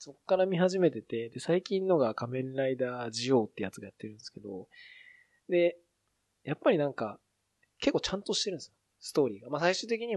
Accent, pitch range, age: native, 115-175 Hz, 20-39